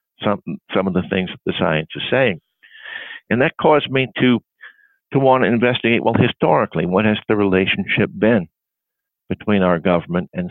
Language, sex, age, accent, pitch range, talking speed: English, male, 60-79, American, 90-135 Hz, 170 wpm